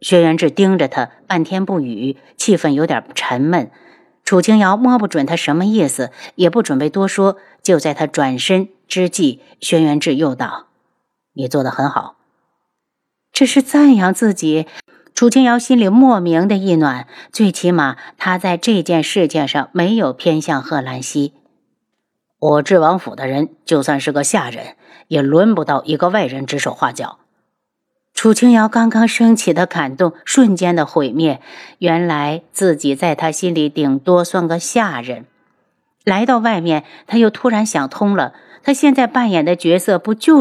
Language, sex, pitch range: Chinese, female, 155-215 Hz